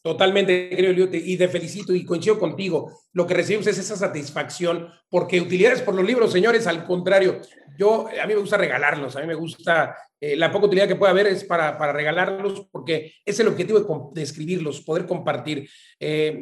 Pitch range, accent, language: 160-195 Hz, Mexican, Spanish